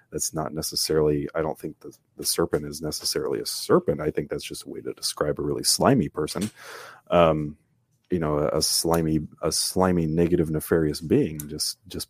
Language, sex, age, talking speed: English, male, 30-49, 190 wpm